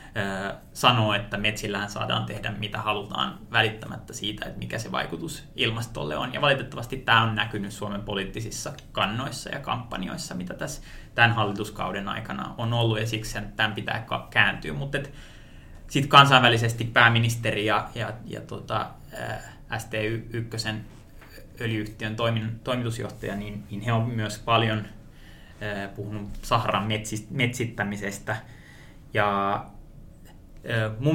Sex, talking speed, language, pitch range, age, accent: male, 125 wpm, Finnish, 105-115 Hz, 20-39, native